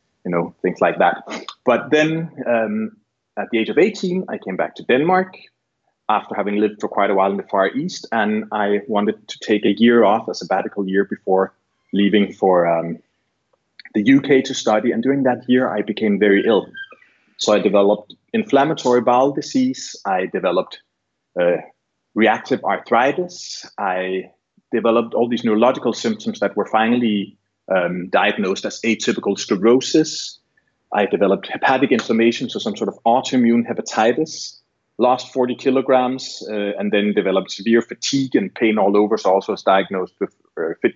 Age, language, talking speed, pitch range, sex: 30-49, Swedish, 165 wpm, 105-130 Hz, male